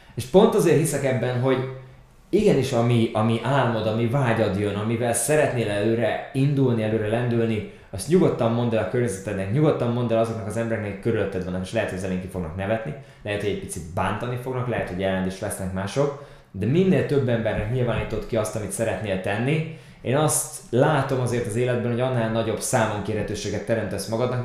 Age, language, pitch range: 20-39, Hungarian, 105-130 Hz